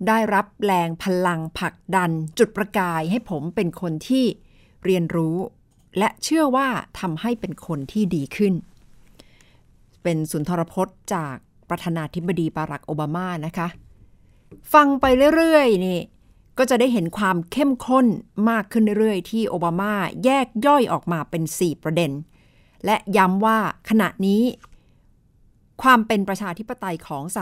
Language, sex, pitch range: Thai, female, 165-215 Hz